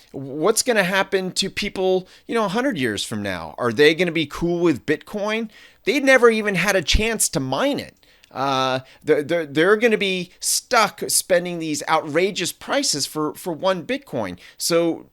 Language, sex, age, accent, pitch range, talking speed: English, male, 30-49, American, 130-175 Hz, 185 wpm